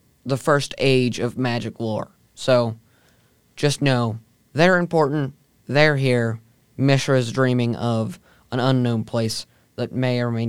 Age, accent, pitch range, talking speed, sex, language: 20-39, American, 120-140 Hz, 130 wpm, male, English